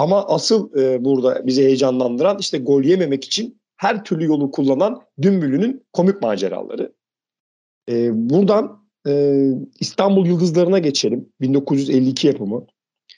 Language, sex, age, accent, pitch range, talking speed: Turkish, male, 50-69, native, 130-185 Hz, 115 wpm